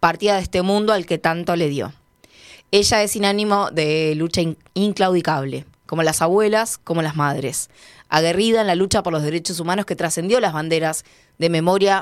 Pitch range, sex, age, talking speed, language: 155-200 Hz, female, 20-39, 180 wpm, Spanish